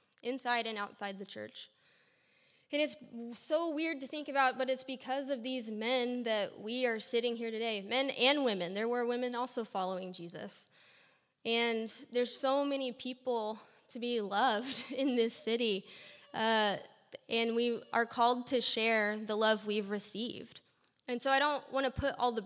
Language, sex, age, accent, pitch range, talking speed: English, female, 20-39, American, 220-270 Hz, 170 wpm